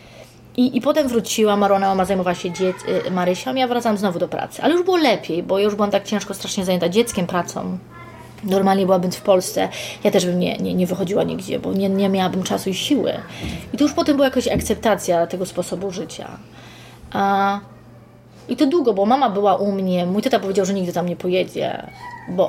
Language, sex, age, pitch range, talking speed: Polish, female, 20-39, 180-235 Hz, 205 wpm